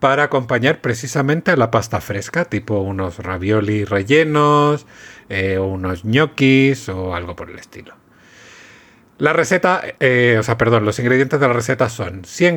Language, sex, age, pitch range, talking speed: Spanish, male, 40-59, 105-135 Hz, 155 wpm